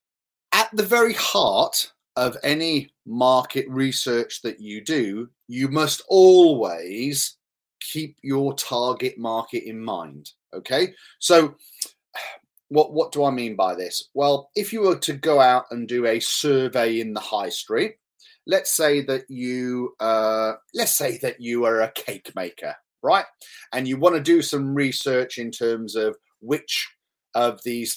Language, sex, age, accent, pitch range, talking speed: English, male, 30-49, British, 120-160 Hz, 150 wpm